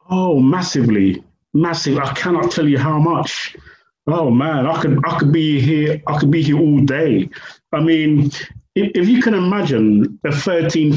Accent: British